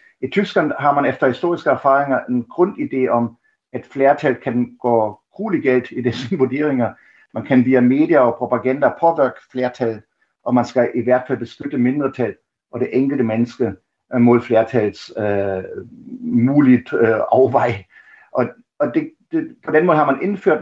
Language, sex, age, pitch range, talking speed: Danish, male, 60-79, 120-145 Hz, 155 wpm